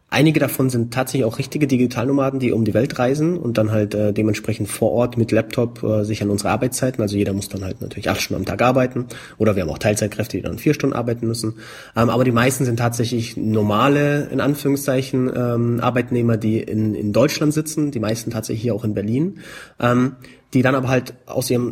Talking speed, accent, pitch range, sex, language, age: 215 wpm, German, 110-130 Hz, male, German, 30-49